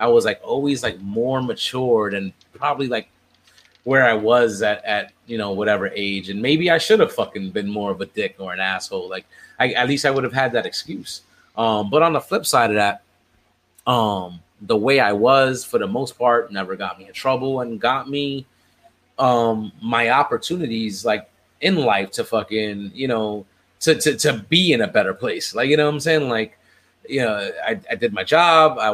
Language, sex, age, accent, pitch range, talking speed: English, male, 30-49, American, 110-150 Hz, 210 wpm